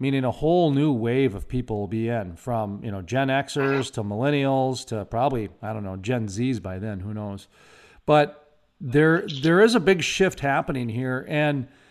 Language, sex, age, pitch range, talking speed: English, male, 40-59, 120-150 Hz, 190 wpm